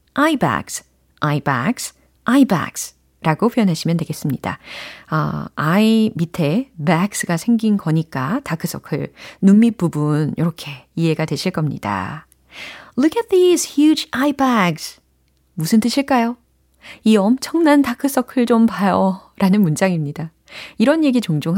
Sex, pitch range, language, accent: female, 155-235 Hz, Korean, native